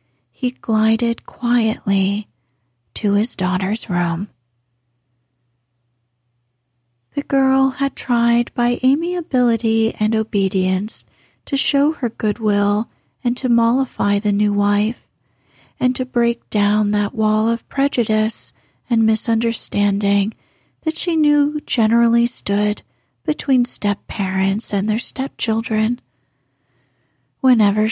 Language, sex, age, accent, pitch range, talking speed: English, female, 40-59, American, 190-240 Hz, 100 wpm